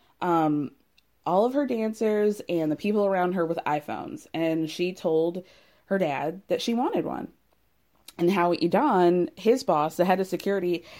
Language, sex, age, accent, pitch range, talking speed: English, female, 20-39, American, 165-220 Hz, 165 wpm